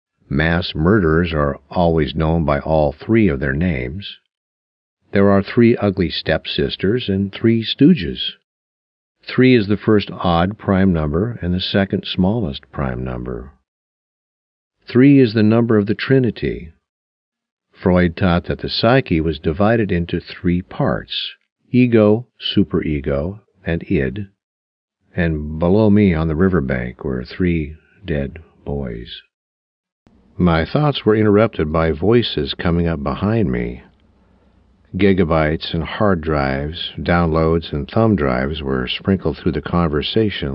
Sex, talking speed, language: male, 130 wpm, English